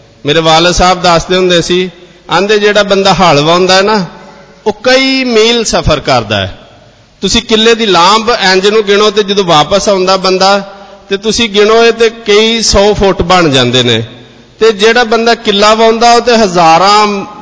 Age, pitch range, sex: 50-69, 155-195 Hz, male